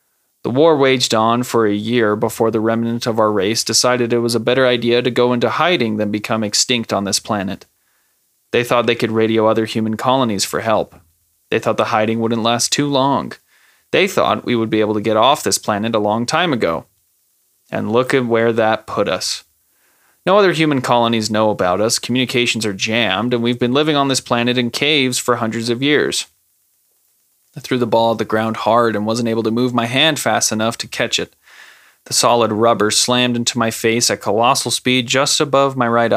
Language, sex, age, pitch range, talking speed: English, male, 20-39, 110-120 Hz, 210 wpm